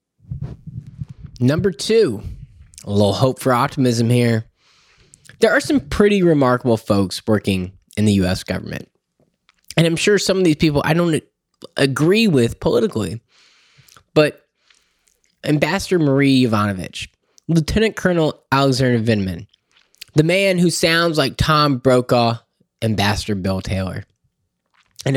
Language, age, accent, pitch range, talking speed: English, 10-29, American, 110-150 Hz, 120 wpm